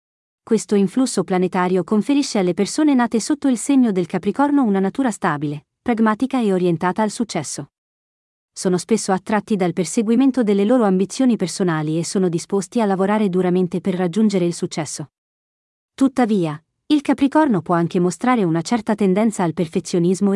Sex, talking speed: female, 145 wpm